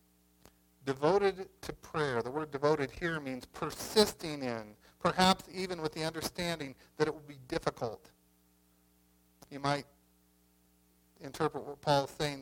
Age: 50-69